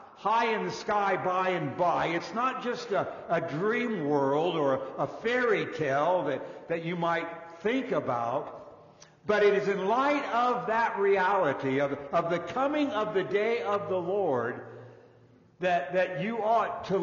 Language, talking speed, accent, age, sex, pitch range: English, 170 wpm, American, 60-79, male, 150-205 Hz